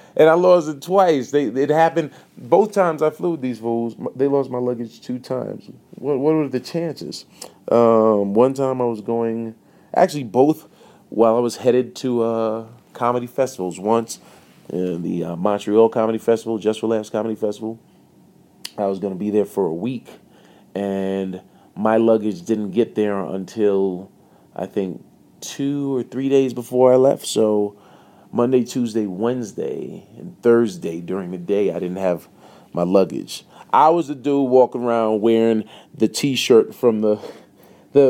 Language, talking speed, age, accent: English, 165 wpm, 30-49, American